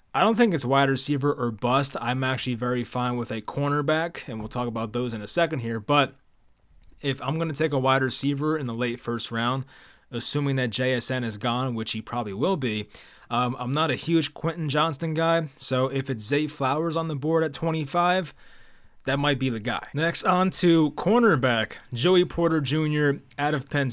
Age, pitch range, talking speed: 20-39, 130-160 Hz, 205 wpm